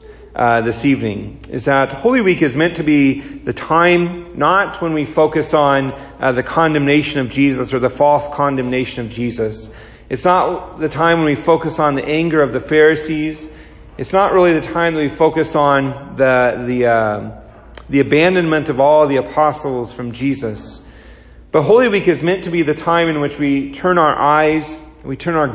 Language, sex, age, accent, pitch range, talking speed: English, male, 40-59, American, 125-160 Hz, 190 wpm